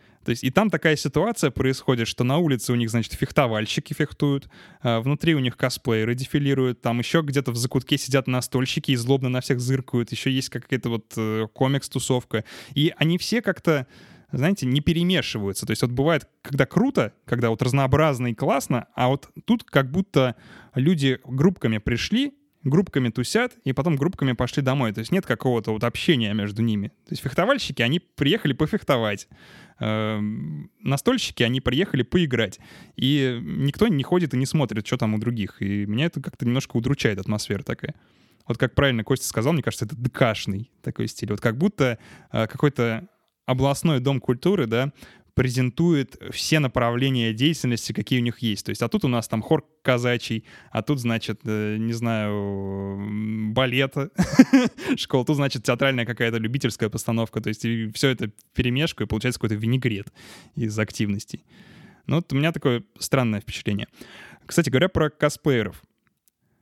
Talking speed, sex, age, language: 160 wpm, male, 20-39, Russian